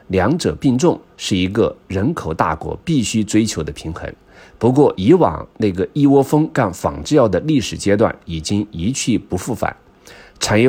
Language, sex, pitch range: Chinese, male, 90-135 Hz